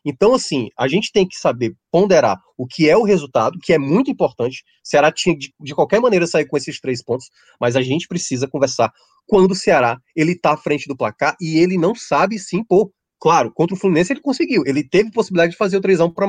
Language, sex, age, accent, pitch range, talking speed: Portuguese, male, 20-39, Brazilian, 140-185 Hz, 225 wpm